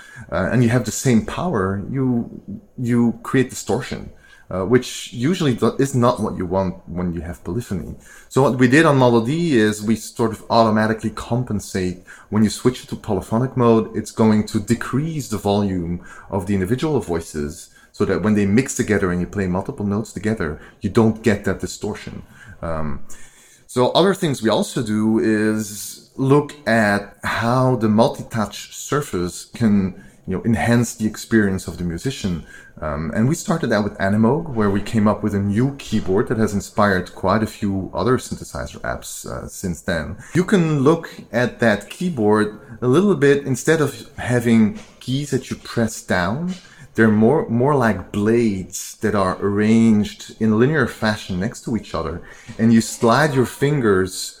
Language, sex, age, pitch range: English, male, 30-49, 100-125 Hz